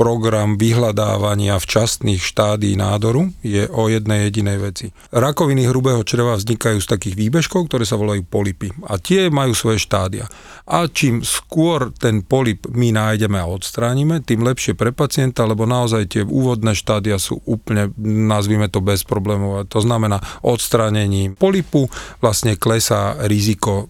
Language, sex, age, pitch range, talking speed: Slovak, male, 40-59, 105-120 Hz, 145 wpm